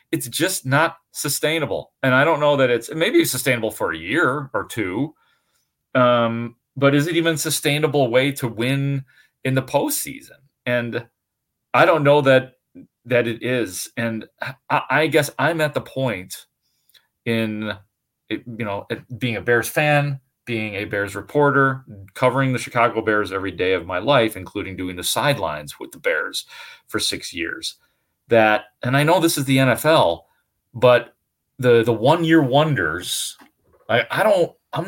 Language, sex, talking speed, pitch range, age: English, male, 165 wpm, 115-150 Hz, 30-49